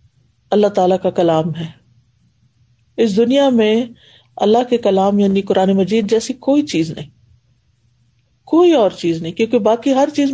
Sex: female